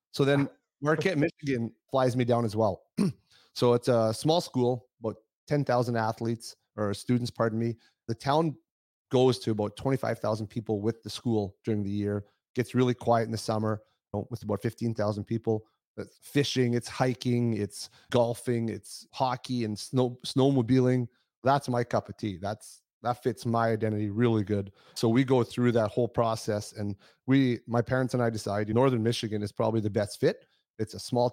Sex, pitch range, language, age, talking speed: male, 110-135 Hz, English, 30-49, 180 wpm